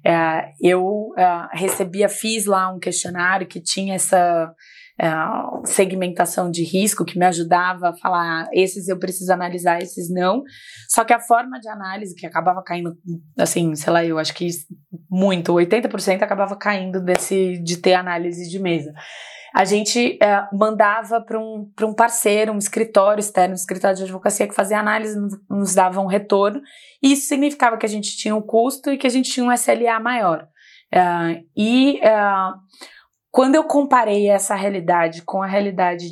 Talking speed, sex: 160 wpm, female